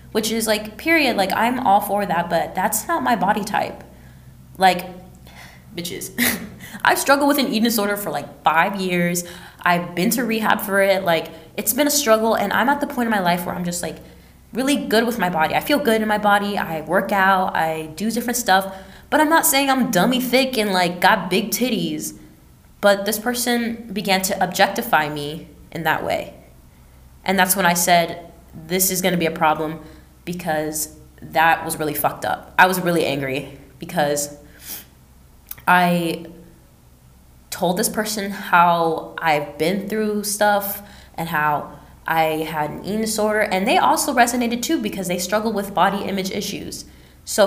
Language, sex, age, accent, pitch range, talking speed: English, female, 10-29, American, 155-210 Hz, 180 wpm